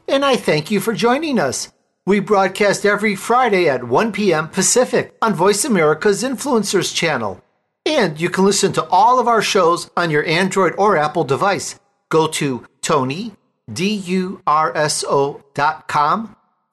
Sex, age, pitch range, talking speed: male, 50-69, 165-220 Hz, 135 wpm